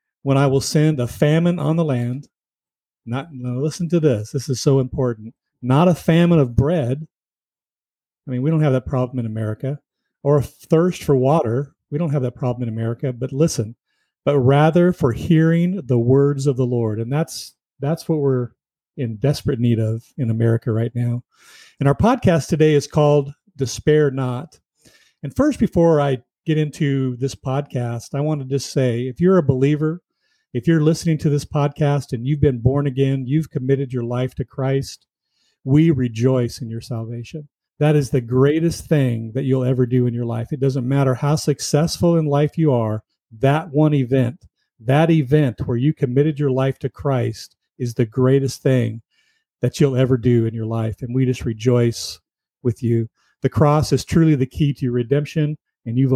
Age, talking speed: 40-59, 185 wpm